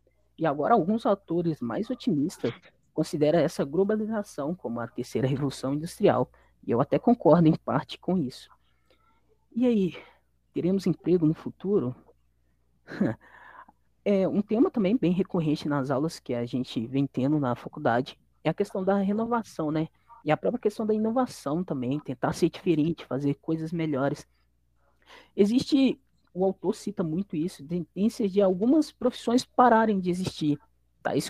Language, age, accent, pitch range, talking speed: Portuguese, 20-39, Brazilian, 140-205 Hz, 150 wpm